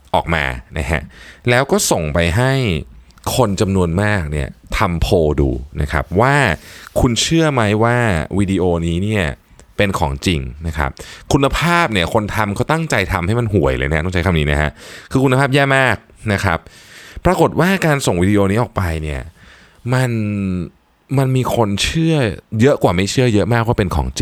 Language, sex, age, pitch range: Thai, male, 20-39, 80-120 Hz